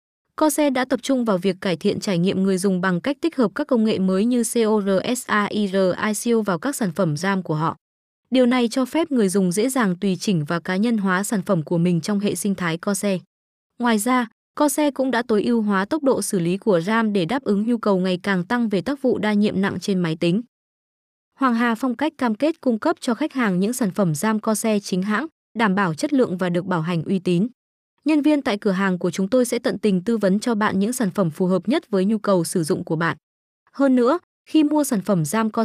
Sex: female